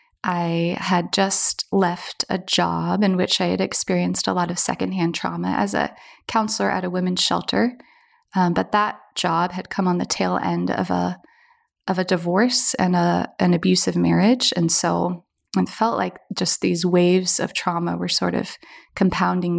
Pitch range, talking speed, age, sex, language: 175-220 Hz, 175 wpm, 20-39, female, English